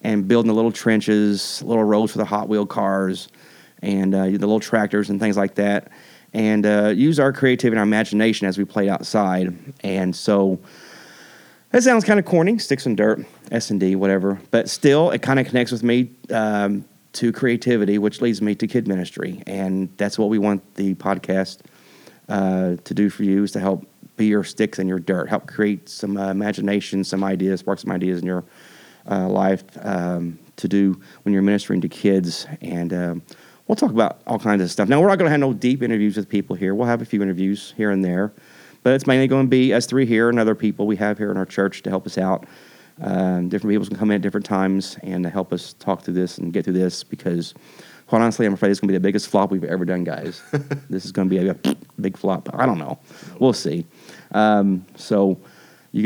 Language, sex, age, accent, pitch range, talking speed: English, male, 30-49, American, 95-110 Hz, 225 wpm